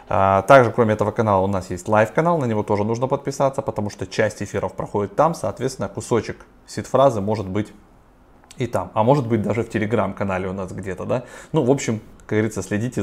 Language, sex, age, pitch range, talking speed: Russian, male, 20-39, 95-120 Hz, 205 wpm